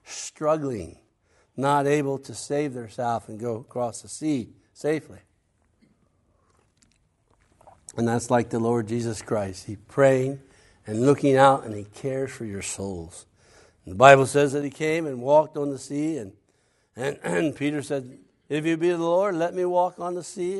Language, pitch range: English, 115-150 Hz